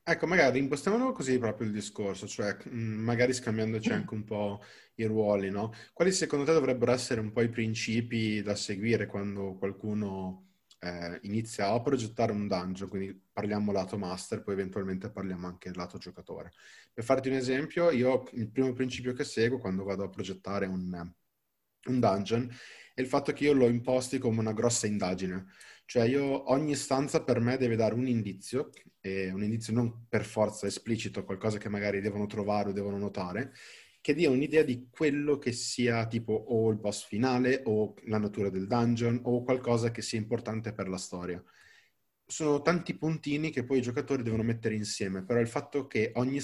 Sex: male